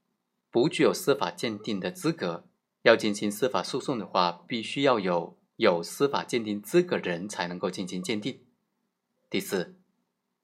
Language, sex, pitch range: Chinese, male, 100-140 Hz